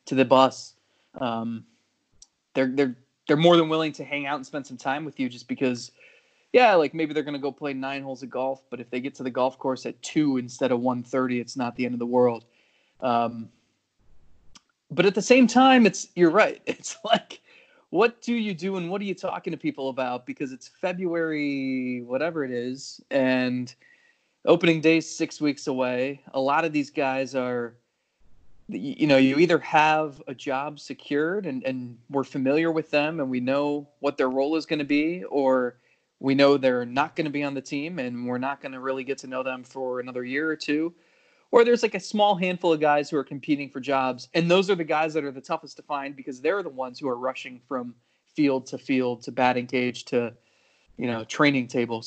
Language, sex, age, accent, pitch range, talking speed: English, male, 20-39, American, 130-160 Hz, 215 wpm